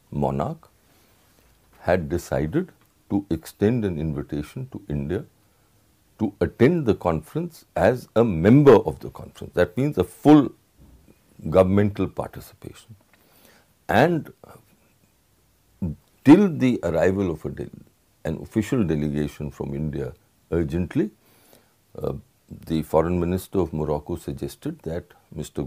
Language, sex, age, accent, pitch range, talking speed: English, male, 60-79, Indian, 80-110 Hz, 110 wpm